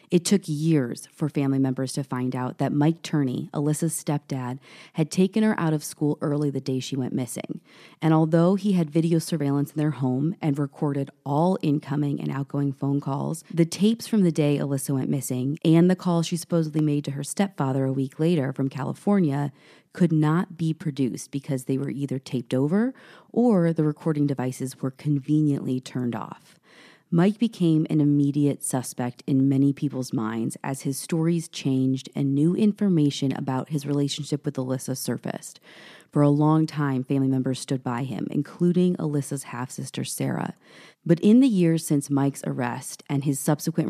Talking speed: 175 wpm